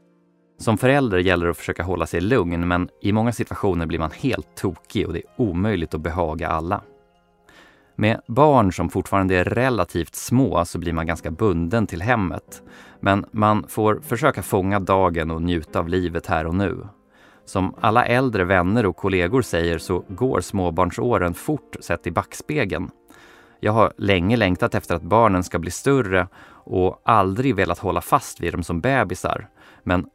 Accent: native